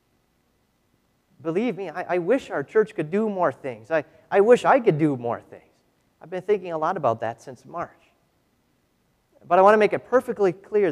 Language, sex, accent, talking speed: English, male, American, 200 wpm